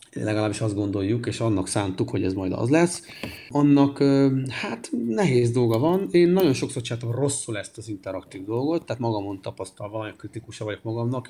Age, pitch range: 30-49, 110-140 Hz